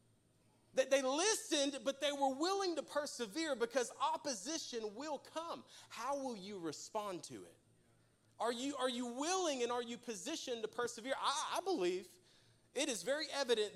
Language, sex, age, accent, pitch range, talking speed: English, male, 30-49, American, 200-285 Hz, 155 wpm